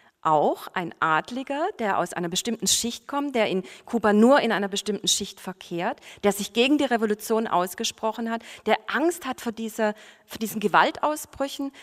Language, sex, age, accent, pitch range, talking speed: German, female, 40-59, German, 185-225 Hz, 155 wpm